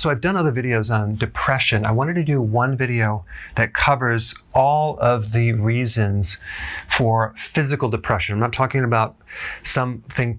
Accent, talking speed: American, 155 wpm